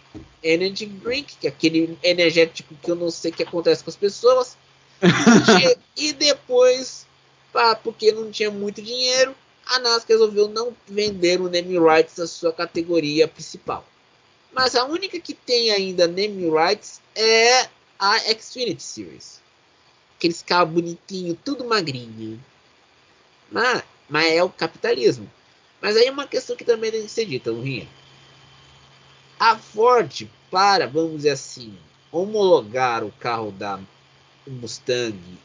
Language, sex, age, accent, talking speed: Portuguese, male, 20-39, Brazilian, 140 wpm